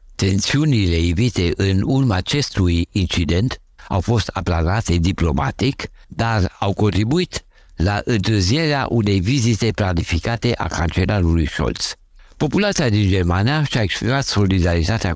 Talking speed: 105 wpm